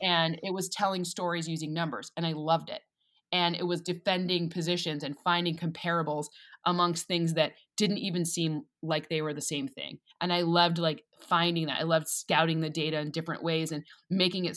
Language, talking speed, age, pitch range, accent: English, 200 wpm, 20-39, 155-180 Hz, American